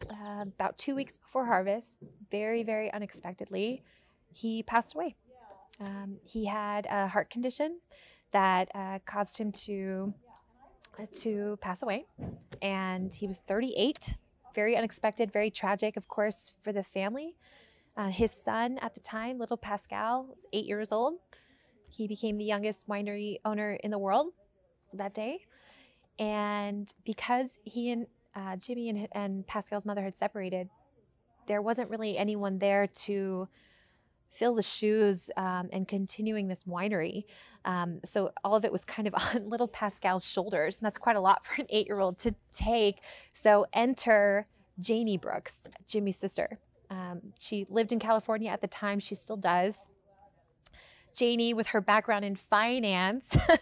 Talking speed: 150 wpm